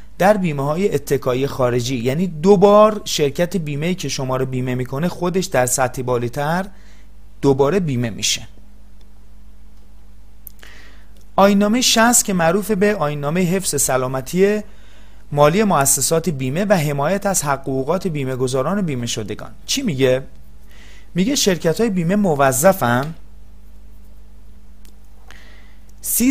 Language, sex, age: Persian, male, 30-49